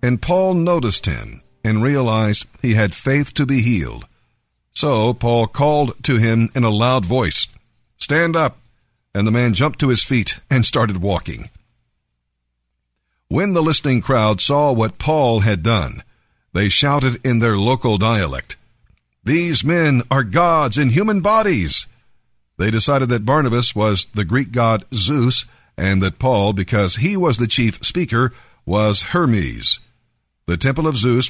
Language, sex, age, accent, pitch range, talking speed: English, male, 50-69, American, 105-140 Hz, 150 wpm